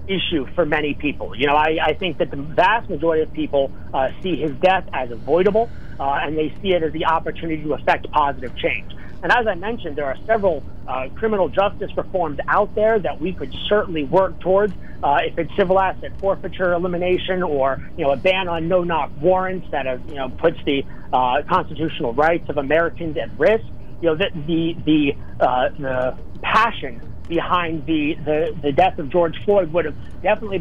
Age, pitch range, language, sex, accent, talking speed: 40-59, 155-185 Hz, English, male, American, 195 wpm